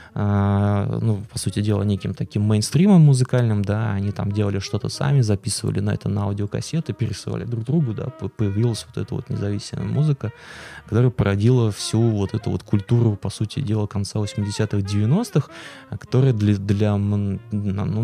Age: 20-39